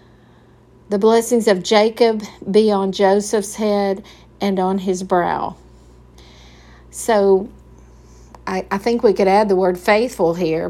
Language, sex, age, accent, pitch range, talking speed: English, female, 50-69, American, 180-220 Hz, 130 wpm